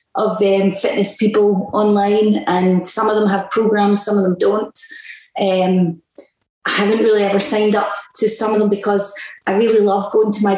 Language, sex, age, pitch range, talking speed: English, female, 30-49, 195-220 Hz, 185 wpm